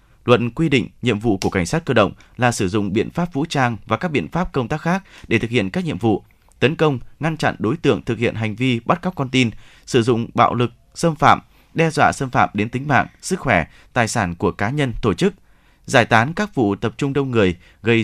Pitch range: 110-145 Hz